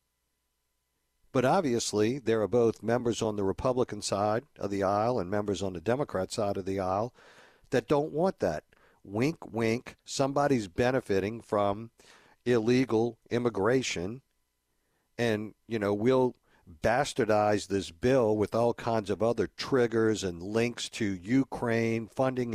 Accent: American